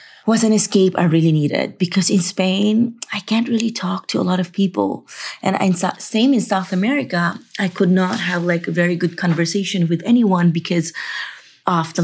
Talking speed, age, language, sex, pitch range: 185 wpm, 30-49, English, female, 165-195 Hz